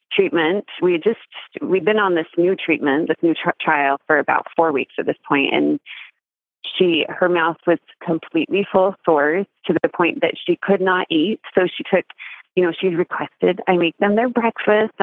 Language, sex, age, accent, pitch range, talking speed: English, female, 30-49, American, 155-195 Hz, 200 wpm